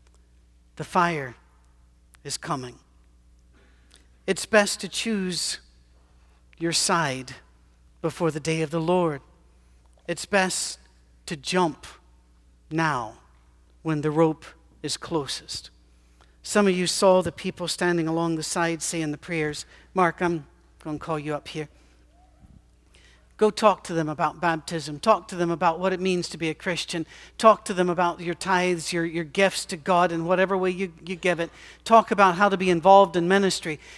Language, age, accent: English, 60-79, American